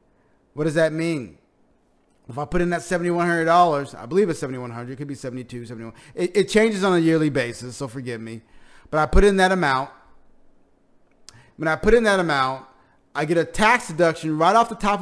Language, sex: English, male